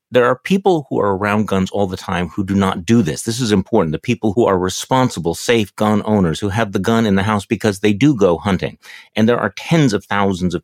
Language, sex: English, male